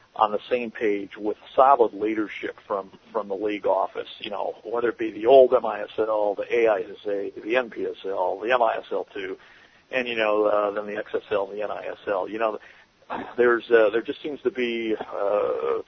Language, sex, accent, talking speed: English, male, American, 175 wpm